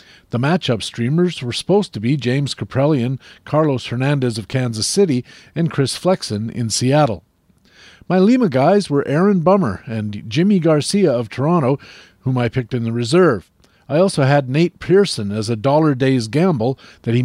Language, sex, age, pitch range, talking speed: English, male, 50-69, 115-155 Hz, 165 wpm